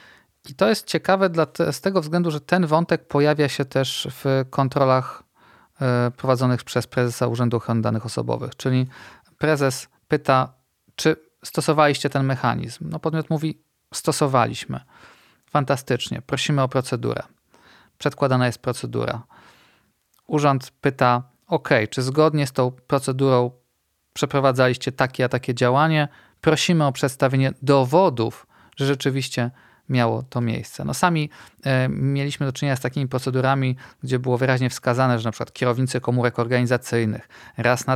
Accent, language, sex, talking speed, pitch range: native, Polish, male, 130 wpm, 125-145 Hz